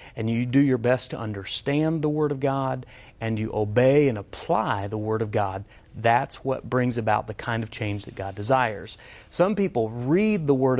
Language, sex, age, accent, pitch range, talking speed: English, male, 30-49, American, 110-140 Hz, 200 wpm